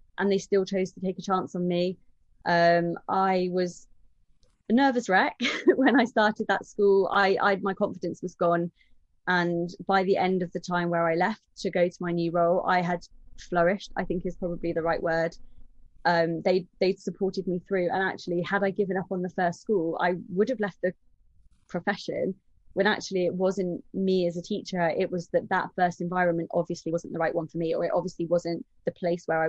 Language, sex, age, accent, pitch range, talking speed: English, female, 20-39, British, 170-190 Hz, 210 wpm